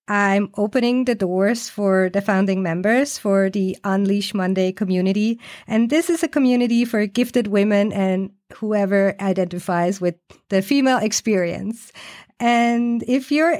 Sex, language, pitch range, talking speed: female, English, 205-255 Hz, 135 wpm